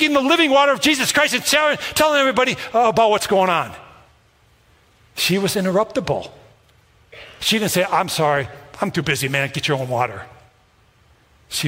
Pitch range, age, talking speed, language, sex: 135-175 Hz, 50-69, 160 wpm, English, male